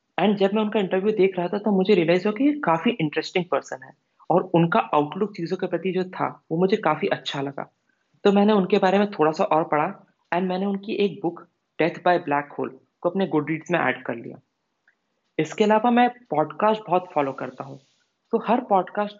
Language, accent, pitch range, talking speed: English, Indian, 155-210 Hz, 165 wpm